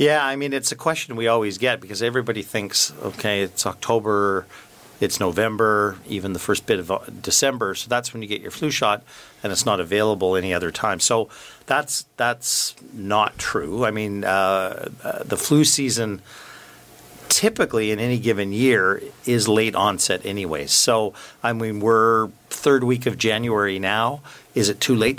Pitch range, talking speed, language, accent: 100-120 Hz, 170 wpm, English, American